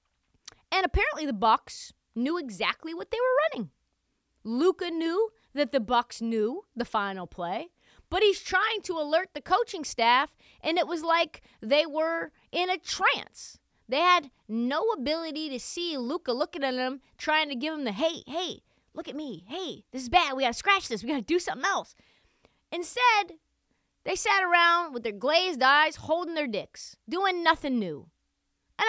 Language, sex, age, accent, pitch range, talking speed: English, female, 30-49, American, 215-330 Hz, 180 wpm